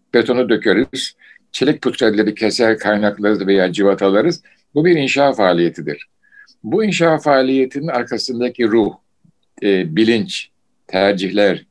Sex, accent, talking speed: male, native, 95 wpm